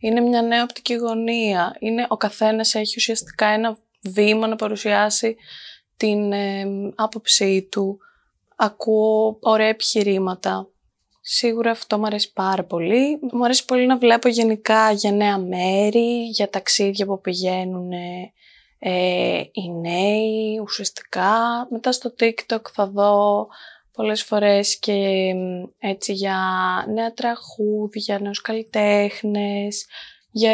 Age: 20-39